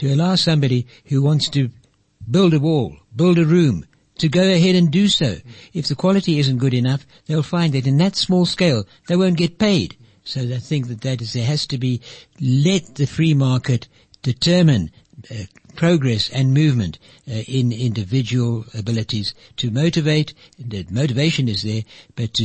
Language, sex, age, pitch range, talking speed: English, male, 60-79, 115-155 Hz, 170 wpm